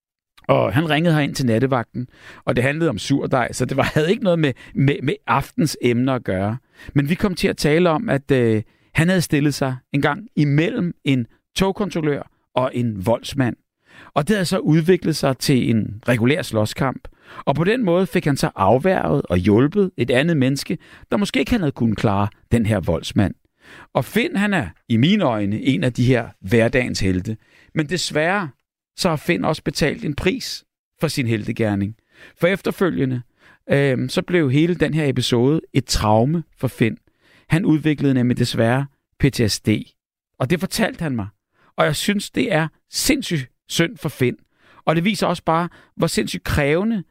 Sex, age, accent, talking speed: male, 60-79, native, 180 wpm